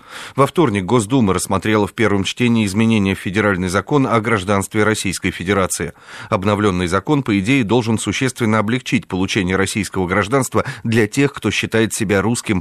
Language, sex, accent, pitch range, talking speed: Russian, male, native, 100-120 Hz, 150 wpm